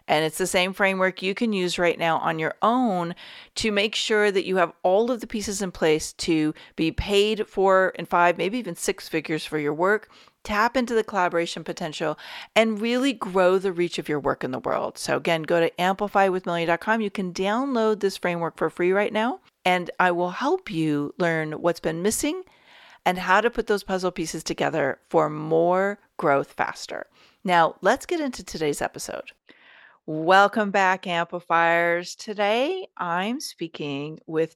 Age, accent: 40-59, American